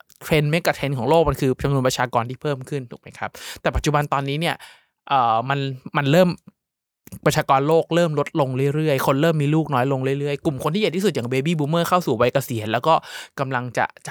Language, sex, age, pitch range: Thai, male, 20-39, 130-160 Hz